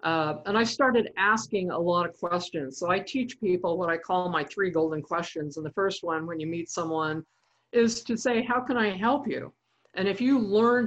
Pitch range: 155-195 Hz